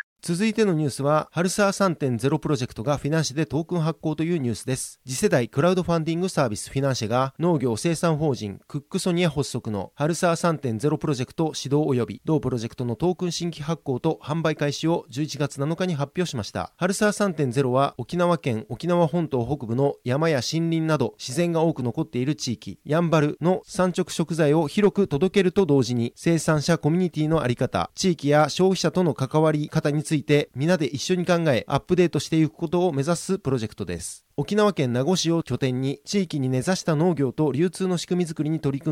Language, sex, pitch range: Japanese, male, 135-170 Hz